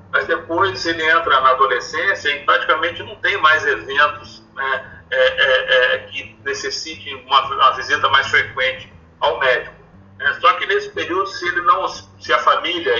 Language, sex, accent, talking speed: Portuguese, male, Brazilian, 165 wpm